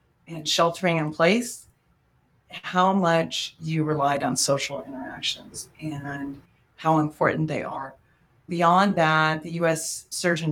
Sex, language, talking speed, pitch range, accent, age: female, English, 120 wpm, 150-180 Hz, American, 40-59